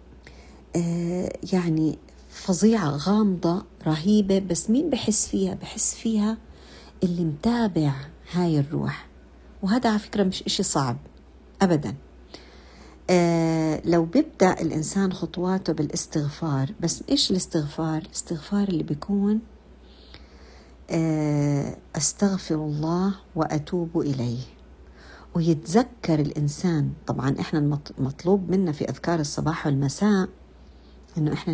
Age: 50-69